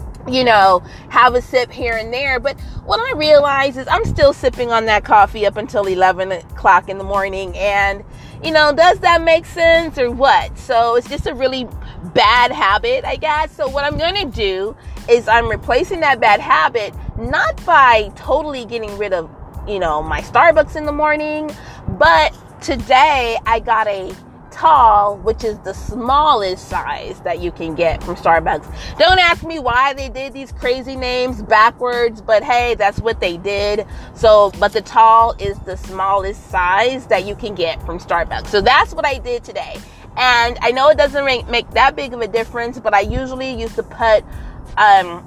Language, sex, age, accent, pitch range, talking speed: English, female, 30-49, American, 205-295 Hz, 185 wpm